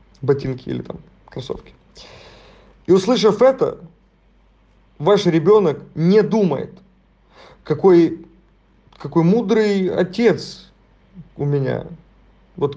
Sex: male